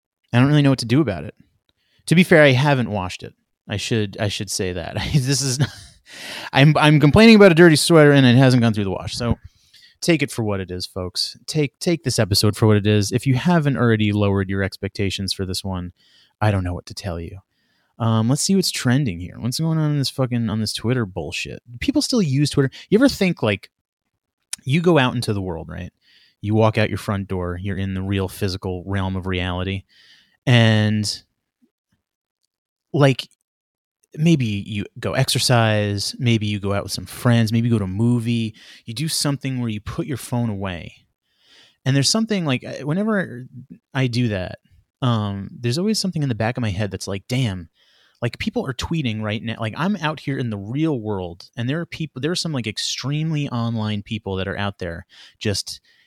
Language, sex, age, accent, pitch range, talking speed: English, male, 30-49, American, 100-145 Hz, 210 wpm